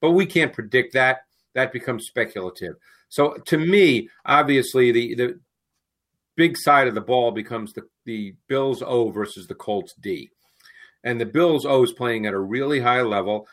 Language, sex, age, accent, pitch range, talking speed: English, male, 50-69, American, 120-145 Hz, 175 wpm